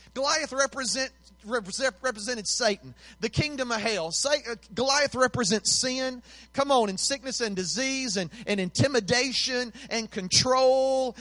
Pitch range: 170-250 Hz